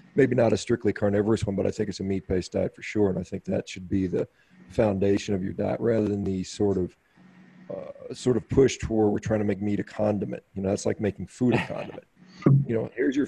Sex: male